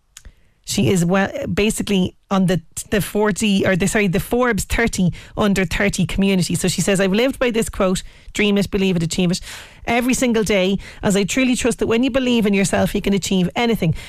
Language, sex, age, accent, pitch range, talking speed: English, female, 30-49, Irish, 175-210 Hz, 205 wpm